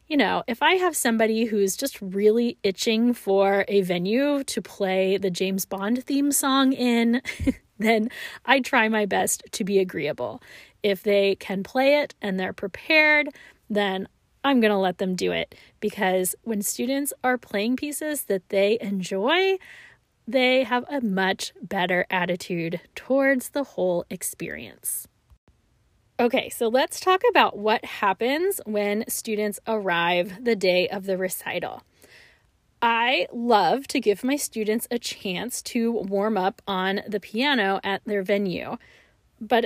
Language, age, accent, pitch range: English, 20-39, American, 195-260 Hz